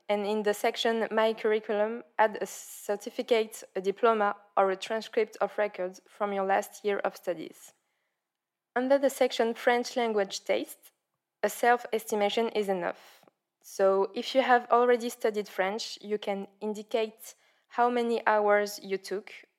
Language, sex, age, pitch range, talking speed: English, female, 20-39, 195-225 Hz, 145 wpm